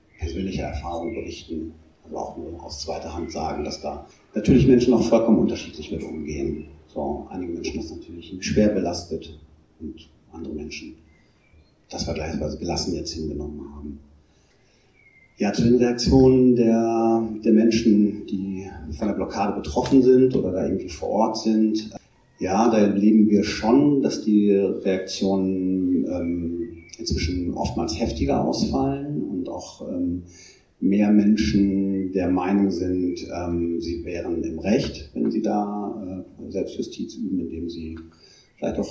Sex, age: male, 40-59